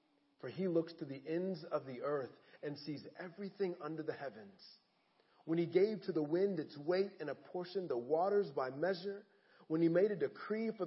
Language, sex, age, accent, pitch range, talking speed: English, male, 40-59, American, 155-205 Hz, 195 wpm